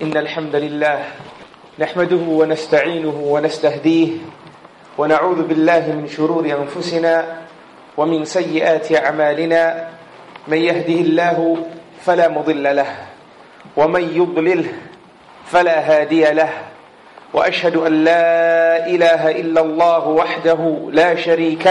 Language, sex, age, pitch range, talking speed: English, male, 40-59, 160-185 Hz, 95 wpm